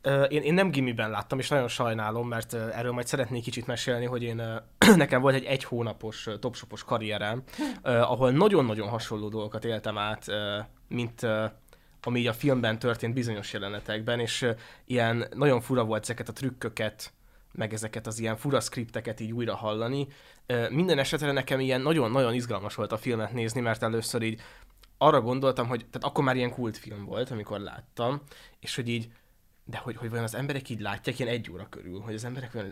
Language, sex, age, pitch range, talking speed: Hungarian, male, 20-39, 110-130 Hz, 195 wpm